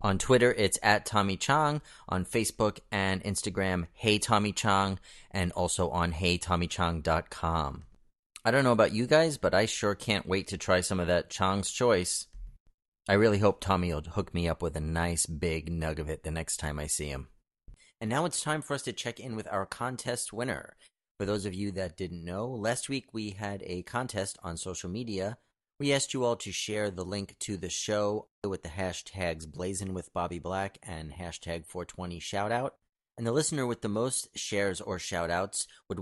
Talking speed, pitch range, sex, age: 185 wpm, 85-110 Hz, male, 30-49